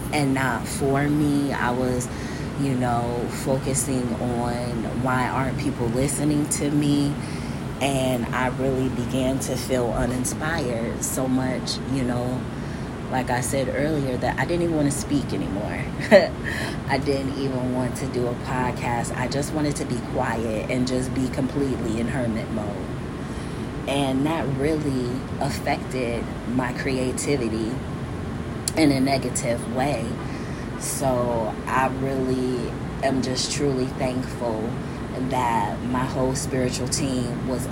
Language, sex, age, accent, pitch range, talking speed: English, female, 20-39, American, 125-135 Hz, 130 wpm